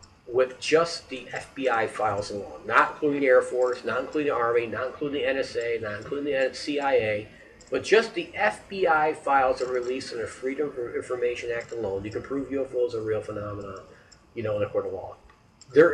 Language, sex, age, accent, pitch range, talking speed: English, male, 40-59, American, 110-170 Hz, 190 wpm